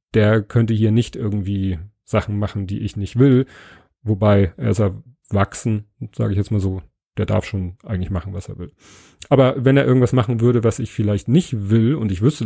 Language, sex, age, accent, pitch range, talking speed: German, male, 30-49, German, 100-125 Hz, 200 wpm